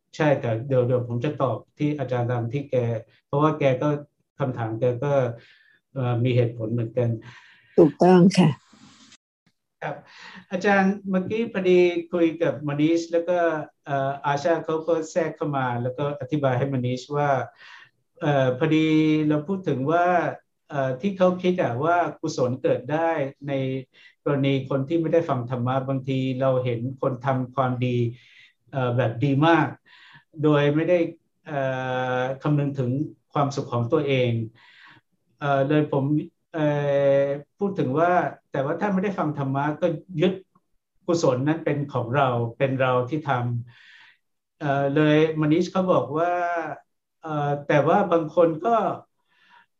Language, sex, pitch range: Thai, male, 135-170 Hz